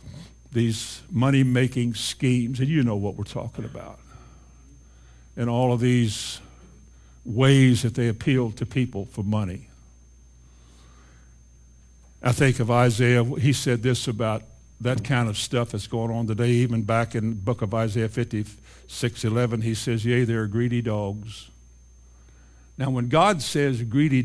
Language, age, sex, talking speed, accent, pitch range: English, 60-79, male, 145 wpm, American, 100-130 Hz